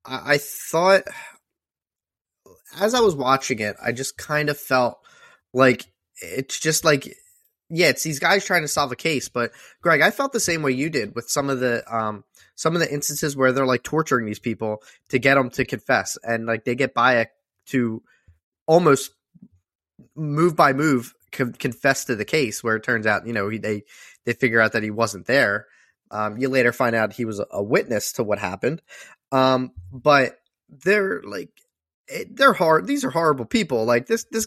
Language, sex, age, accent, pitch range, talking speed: English, male, 10-29, American, 115-145 Hz, 190 wpm